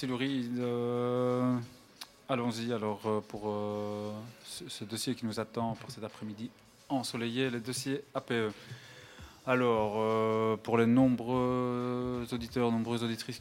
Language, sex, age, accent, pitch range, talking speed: French, male, 20-39, French, 105-125 Hz, 120 wpm